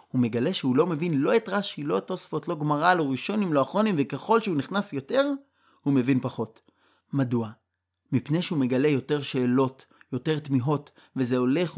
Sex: male